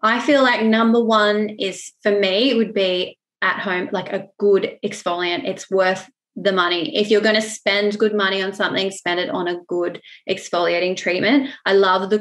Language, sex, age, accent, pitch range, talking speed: English, female, 20-39, Australian, 180-215 Hz, 195 wpm